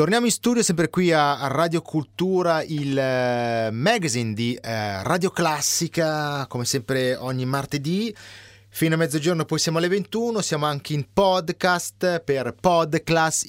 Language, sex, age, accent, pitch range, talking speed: Italian, male, 30-49, native, 120-165 Hz, 135 wpm